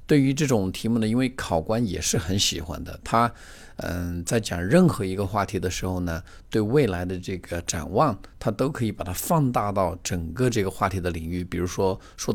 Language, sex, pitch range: Chinese, male, 90-115 Hz